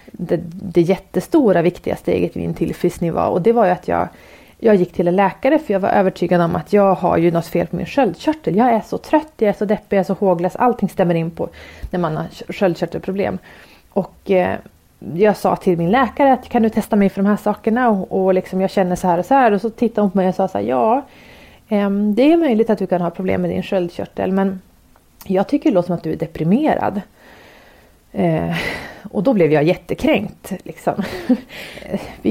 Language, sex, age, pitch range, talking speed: English, female, 30-49, 180-230 Hz, 215 wpm